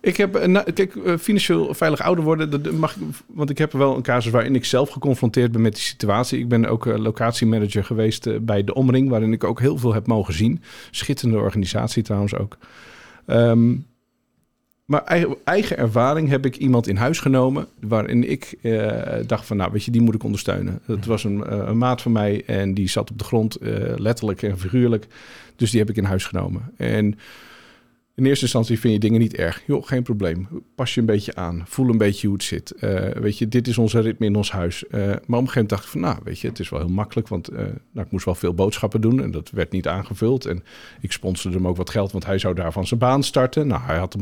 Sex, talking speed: male, 235 wpm